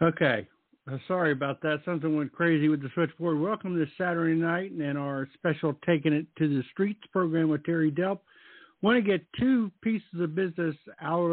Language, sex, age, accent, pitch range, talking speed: English, male, 60-79, American, 140-175 Hz, 195 wpm